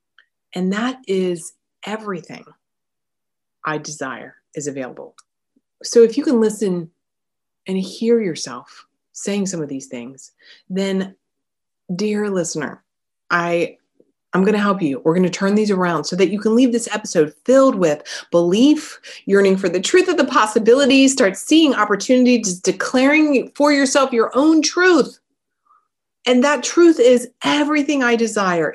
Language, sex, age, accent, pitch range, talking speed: English, female, 30-49, American, 175-250 Hz, 145 wpm